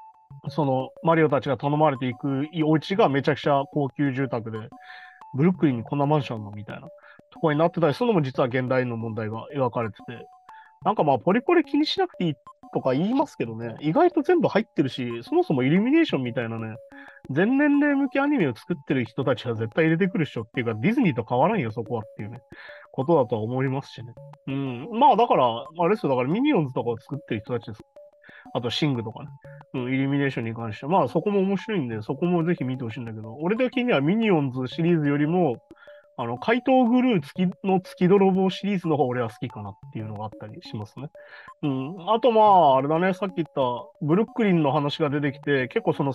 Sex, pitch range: male, 130-210 Hz